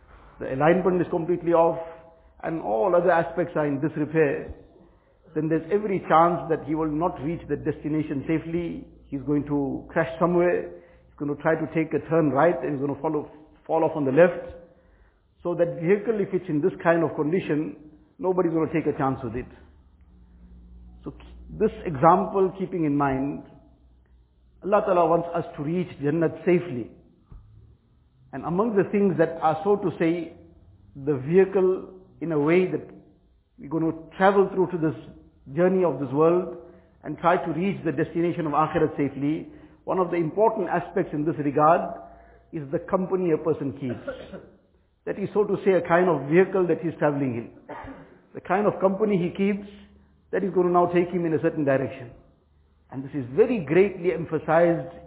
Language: English